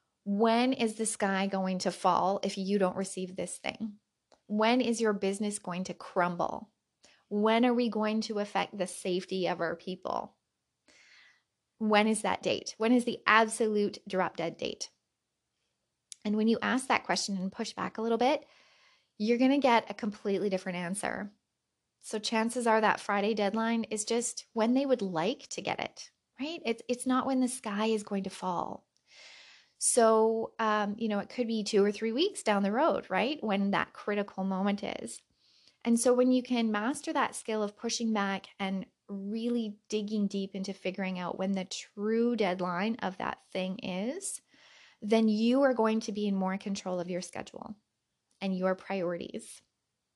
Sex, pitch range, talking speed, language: female, 195-235 Hz, 180 wpm, English